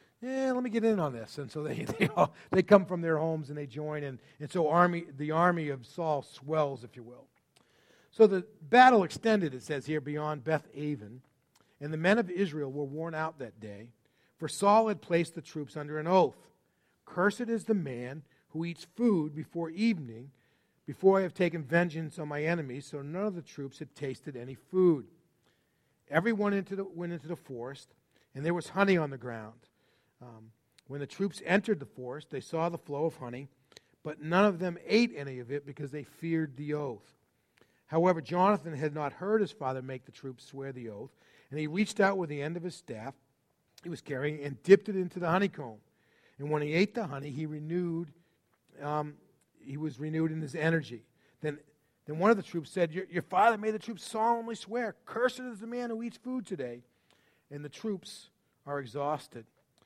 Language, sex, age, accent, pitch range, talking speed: English, male, 40-59, American, 140-185 Hz, 200 wpm